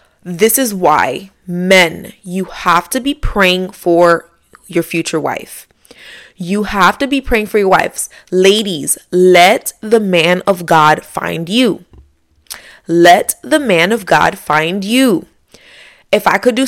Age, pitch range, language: 20-39, 170-210 Hz, English